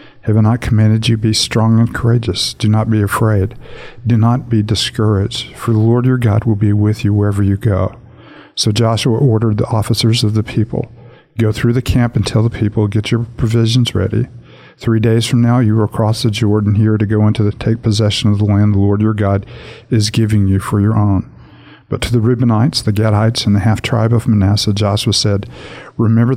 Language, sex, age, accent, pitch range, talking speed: English, male, 50-69, American, 100-115 Hz, 210 wpm